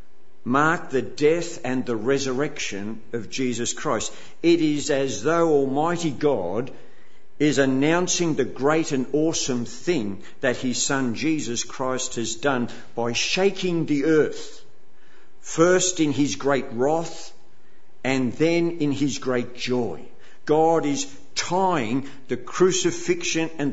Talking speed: 125 wpm